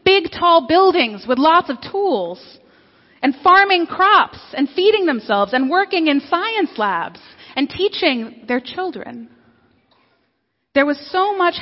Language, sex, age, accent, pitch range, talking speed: English, female, 30-49, American, 230-315 Hz, 135 wpm